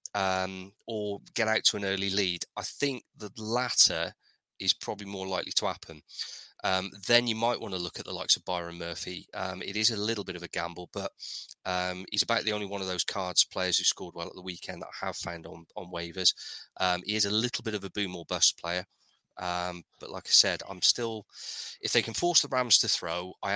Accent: British